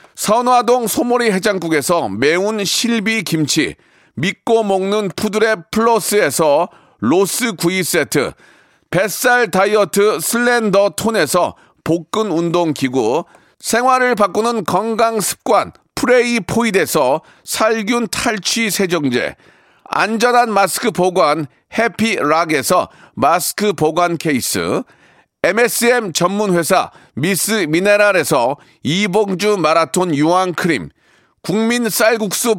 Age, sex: 40-59, male